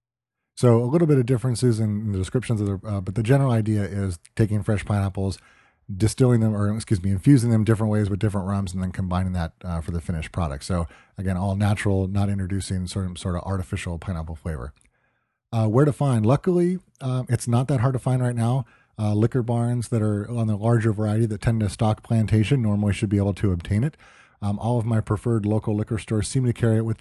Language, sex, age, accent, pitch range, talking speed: English, male, 30-49, American, 100-120 Hz, 225 wpm